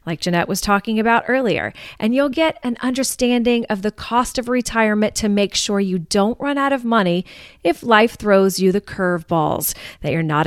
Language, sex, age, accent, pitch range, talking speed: English, female, 30-49, American, 180-240 Hz, 195 wpm